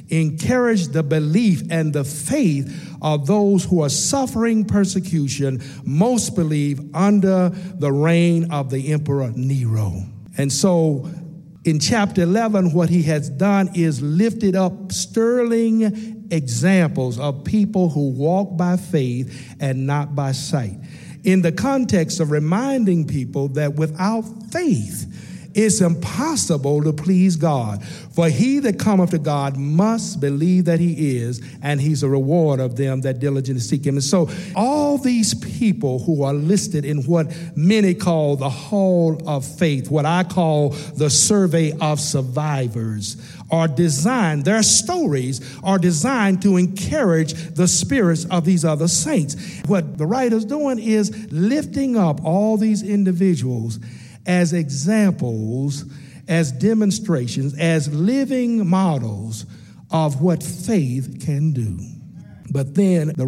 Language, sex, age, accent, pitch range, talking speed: English, male, 50-69, American, 140-190 Hz, 135 wpm